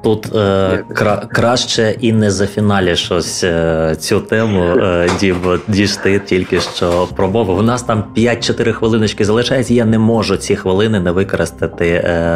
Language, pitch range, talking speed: Ukrainian, 90-110 Hz, 155 wpm